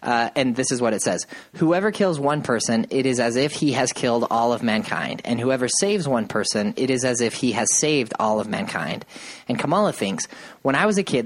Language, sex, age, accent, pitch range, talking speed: English, male, 30-49, American, 115-145 Hz, 235 wpm